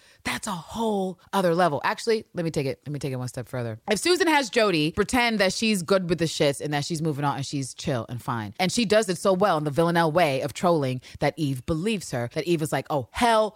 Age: 30-49